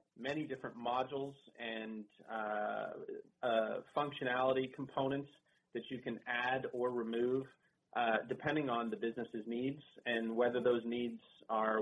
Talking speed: 125 wpm